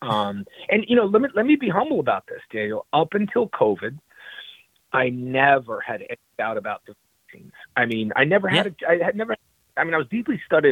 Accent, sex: American, male